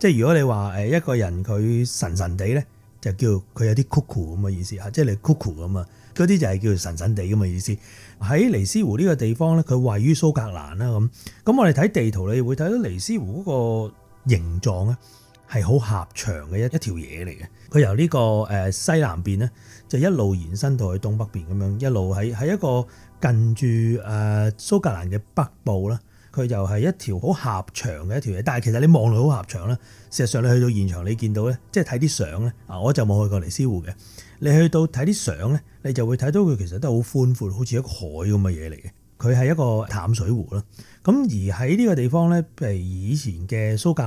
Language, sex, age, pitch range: Chinese, male, 30-49, 100-130 Hz